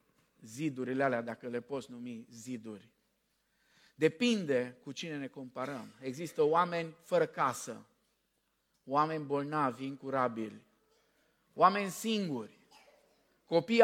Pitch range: 140-225 Hz